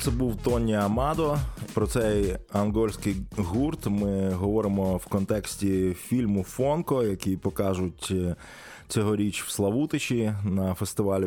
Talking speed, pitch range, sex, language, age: 110 wpm, 95-115 Hz, male, Ukrainian, 20-39